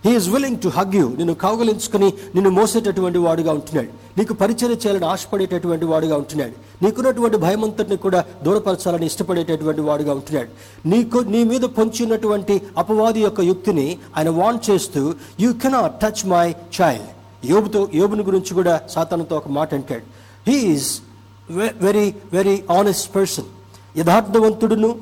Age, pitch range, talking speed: 60-79, 155-215 Hz, 150 wpm